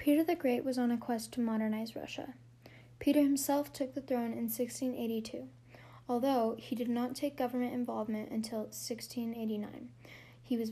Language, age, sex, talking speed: English, 10-29, female, 155 wpm